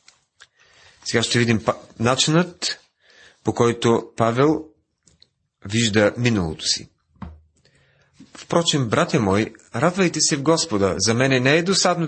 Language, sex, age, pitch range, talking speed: Bulgarian, male, 30-49, 105-140 Hz, 115 wpm